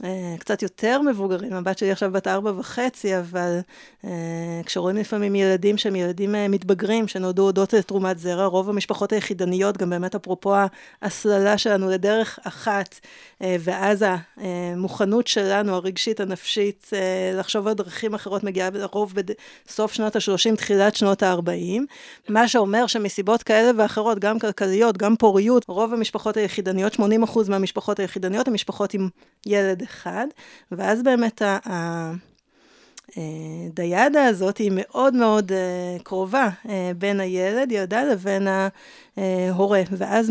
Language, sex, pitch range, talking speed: Hebrew, female, 190-220 Hz, 110 wpm